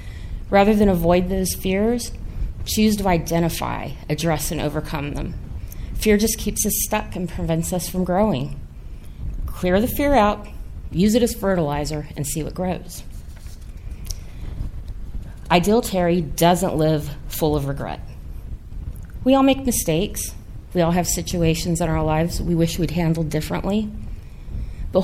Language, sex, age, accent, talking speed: English, female, 30-49, American, 140 wpm